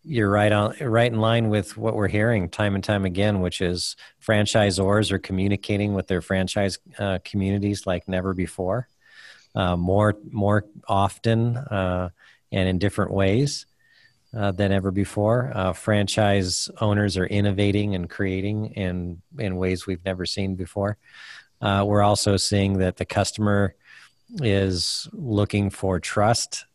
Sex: male